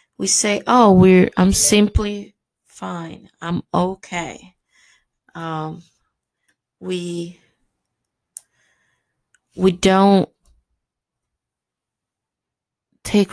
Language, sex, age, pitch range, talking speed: English, female, 20-39, 170-195 Hz, 65 wpm